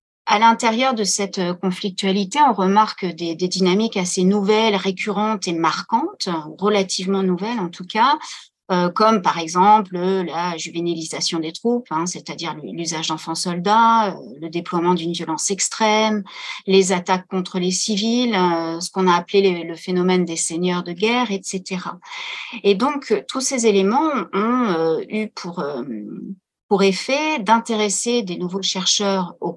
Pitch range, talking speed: 175-225 Hz, 135 wpm